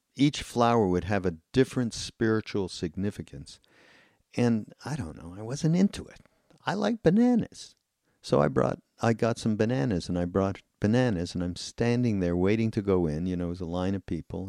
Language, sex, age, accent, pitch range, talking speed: English, male, 50-69, American, 85-110 Hz, 190 wpm